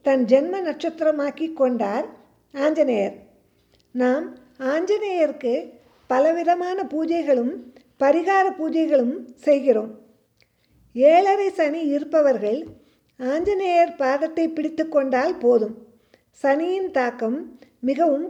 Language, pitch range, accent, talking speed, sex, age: Tamil, 255-330 Hz, native, 75 wpm, female, 50-69